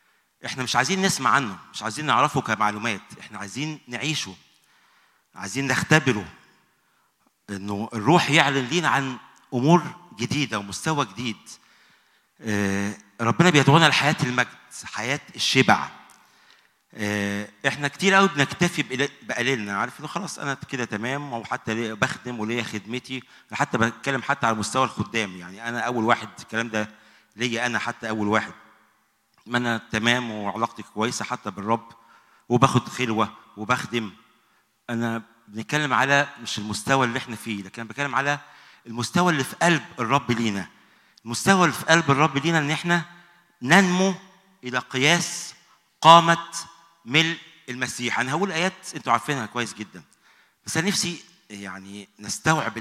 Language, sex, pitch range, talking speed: English, male, 110-150 Hz, 130 wpm